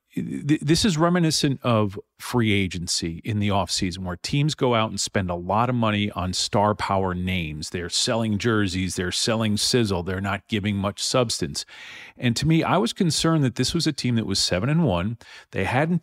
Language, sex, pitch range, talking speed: English, male, 105-135 Hz, 200 wpm